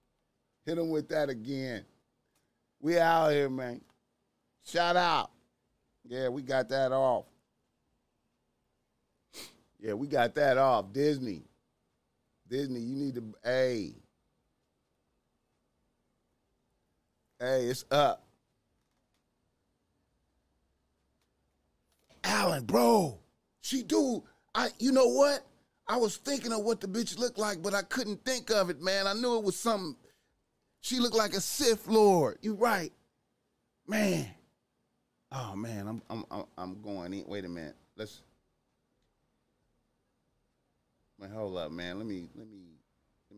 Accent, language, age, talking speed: American, English, 30-49, 125 wpm